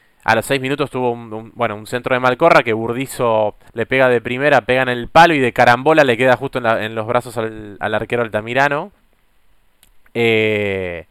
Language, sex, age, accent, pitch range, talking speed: Spanish, male, 20-39, Argentinian, 110-150 Hz, 190 wpm